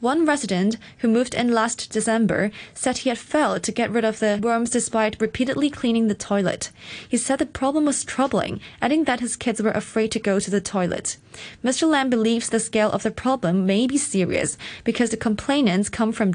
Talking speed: 200 wpm